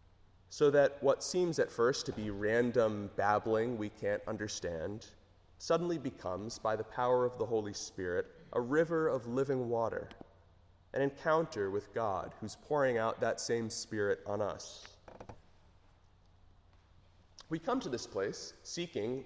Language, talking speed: English, 140 wpm